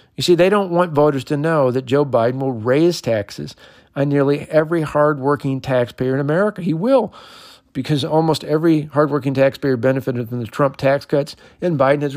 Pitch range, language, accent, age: 130-150 Hz, English, American, 50-69